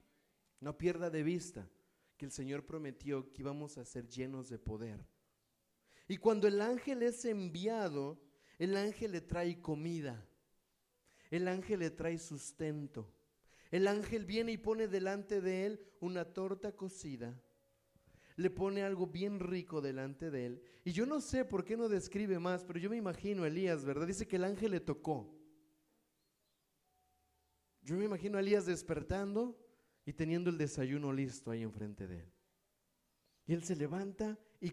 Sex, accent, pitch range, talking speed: male, Mexican, 140-195 Hz, 160 wpm